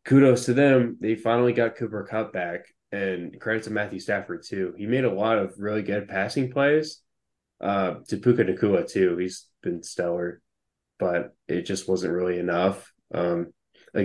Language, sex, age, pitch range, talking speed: English, male, 20-39, 95-110 Hz, 170 wpm